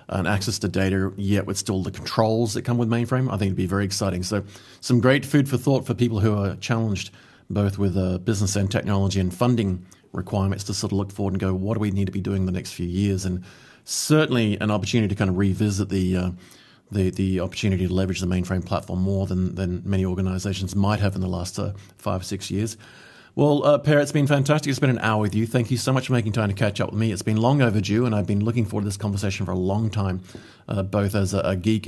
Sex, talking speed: male, 260 wpm